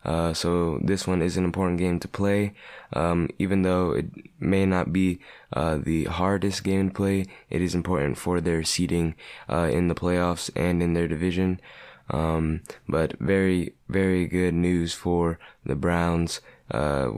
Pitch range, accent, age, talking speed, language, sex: 85-95 Hz, American, 20-39, 160 wpm, English, male